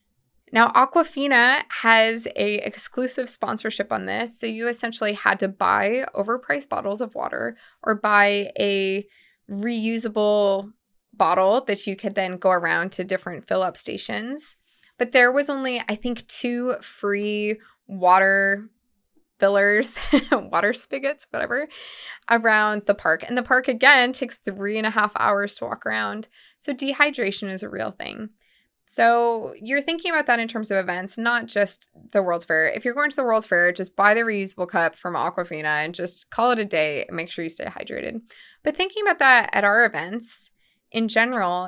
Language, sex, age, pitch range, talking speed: English, female, 20-39, 200-245 Hz, 170 wpm